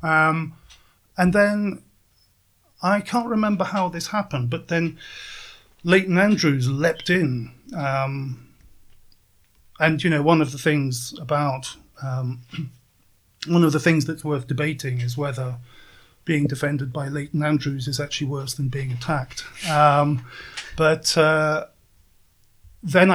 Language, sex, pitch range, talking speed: English, male, 135-165 Hz, 125 wpm